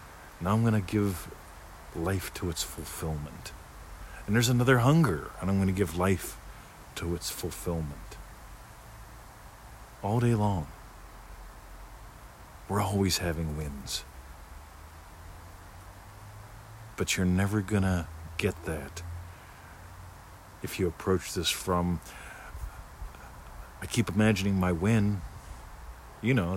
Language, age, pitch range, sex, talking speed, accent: English, 50-69, 85-105 Hz, male, 110 wpm, American